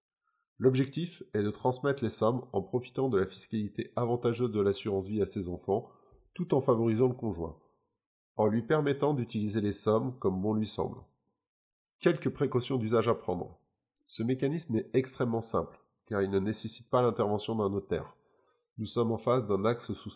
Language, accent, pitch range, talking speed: French, French, 105-125 Hz, 170 wpm